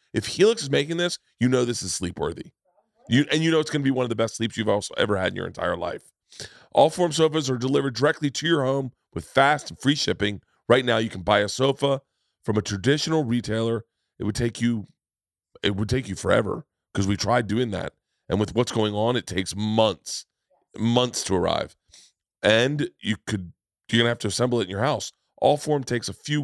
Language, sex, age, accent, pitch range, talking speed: English, male, 30-49, American, 105-130 Hz, 220 wpm